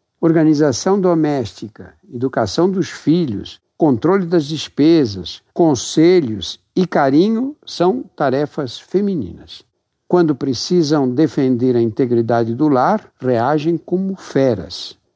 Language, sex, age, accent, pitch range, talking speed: Portuguese, male, 60-79, Brazilian, 130-175 Hz, 95 wpm